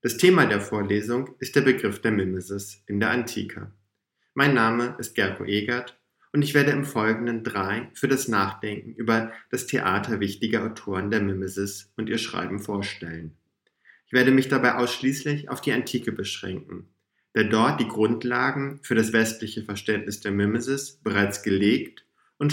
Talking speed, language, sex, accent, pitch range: 155 wpm, German, male, German, 105-130 Hz